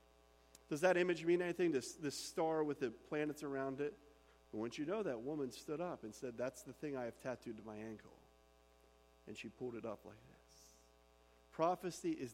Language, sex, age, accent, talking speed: English, male, 40-59, American, 200 wpm